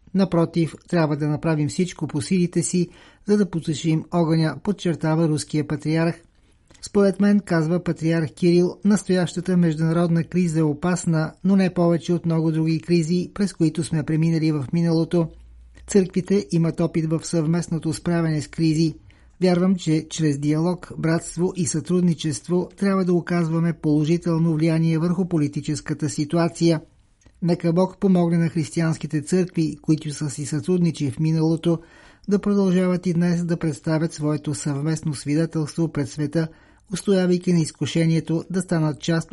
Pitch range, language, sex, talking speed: 155-175 Hz, Bulgarian, male, 135 wpm